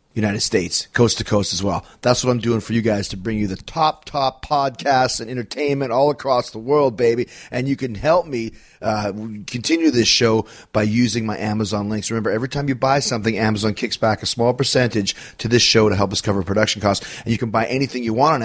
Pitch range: 105-125 Hz